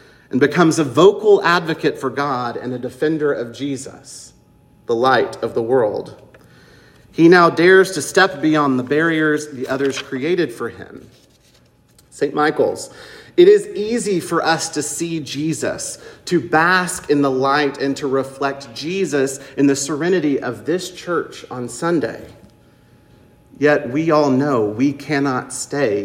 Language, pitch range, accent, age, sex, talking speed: English, 135-165 Hz, American, 40-59, male, 145 wpm